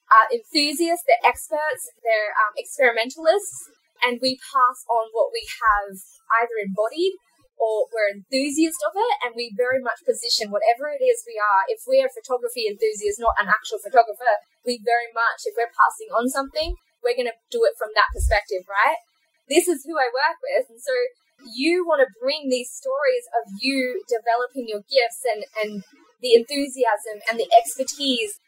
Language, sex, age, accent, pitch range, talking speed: English, female, 20-39, Australian, 245-340 Hz, 175 wpm